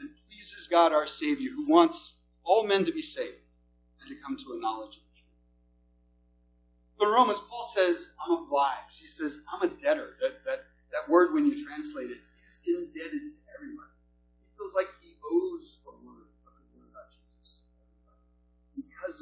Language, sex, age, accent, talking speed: English, male, 30-49, American, 170 wpm